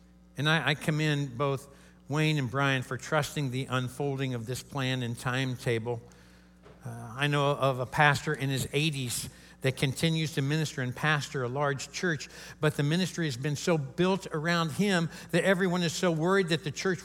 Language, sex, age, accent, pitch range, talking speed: English, male, 60-79, American, 130-175 Hz, 180 wpm